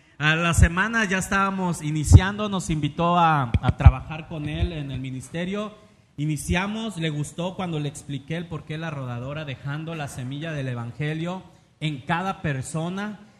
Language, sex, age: Spanish, male, 40-59